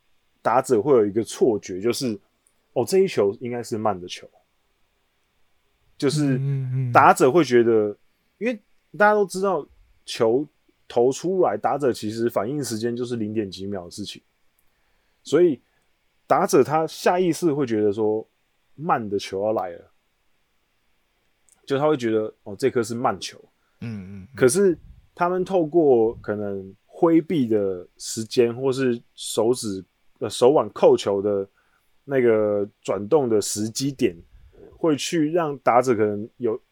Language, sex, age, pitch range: Chinese, male, 20-39, 100-135 Hz